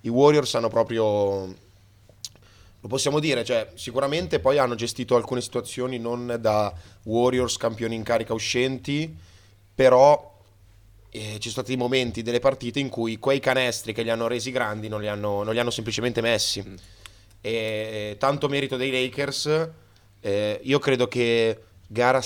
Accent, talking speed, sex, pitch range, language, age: native, 150 wpm, male, 105-125 Hz, Italian, 20-39